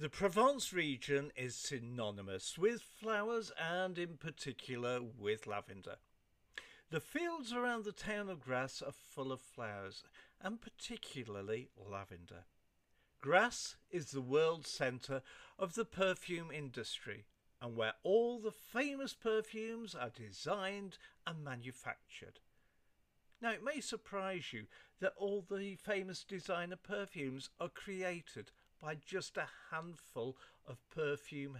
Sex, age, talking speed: male, 50-69, 120 wpm